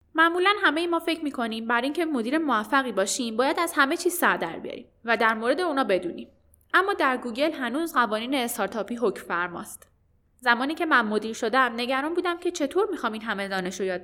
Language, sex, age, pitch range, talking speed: Persian, female, 10-29, 210-285 Hz, 185 wpm